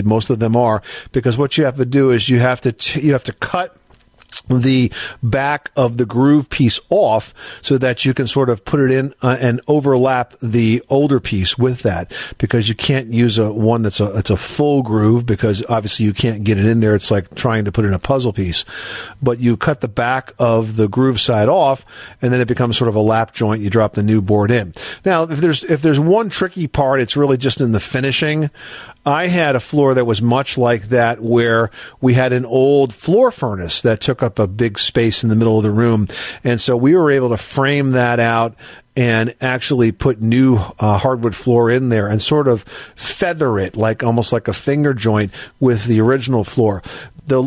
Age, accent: 50-69, American